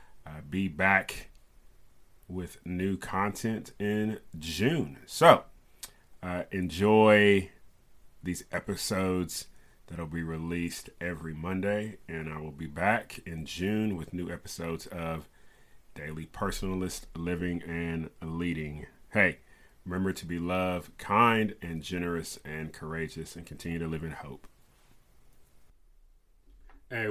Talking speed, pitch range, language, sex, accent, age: 115 wpm, 85-110 Hz, English, male, American, 30-49